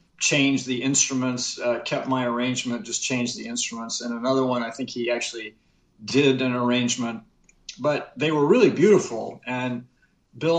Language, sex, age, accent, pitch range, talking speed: English, male, 50-69, American, 120-140 Hz, 160 wpm